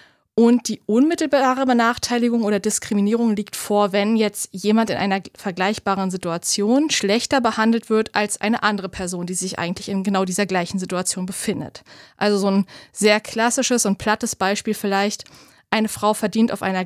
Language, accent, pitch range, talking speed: German, German, 190-230 Hz, 160 wpm